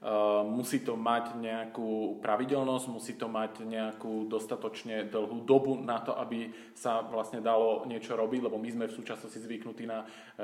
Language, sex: Slovak, male